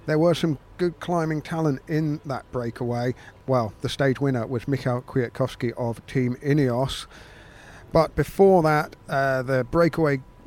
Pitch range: 125-155 Hz